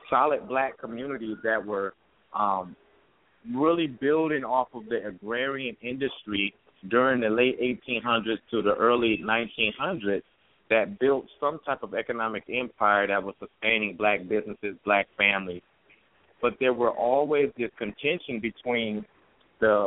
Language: English